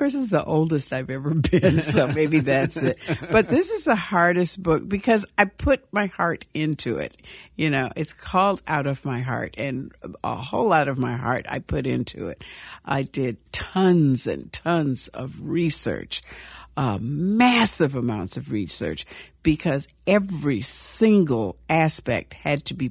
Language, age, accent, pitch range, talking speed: English, 60-79, American, 130-175 Hz, 160 wpm